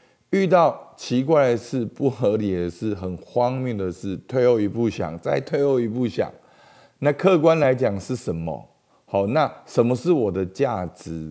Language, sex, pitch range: Chinese, male, 95-140 Hz